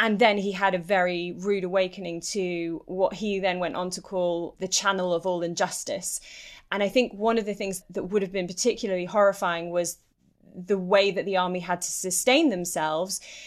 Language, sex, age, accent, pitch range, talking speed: English, female, 20-39, British, 175-205 Hz, 195 wpm